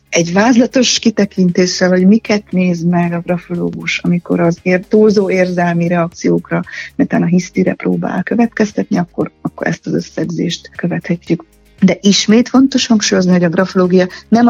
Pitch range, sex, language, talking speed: 170-200 Hz, female, Hungarian, 140 wpm